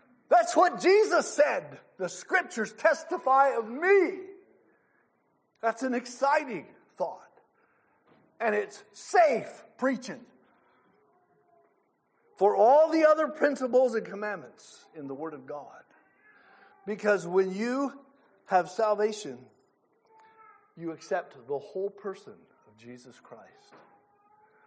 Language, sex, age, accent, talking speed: English, male, 50-69, American, 100 wpm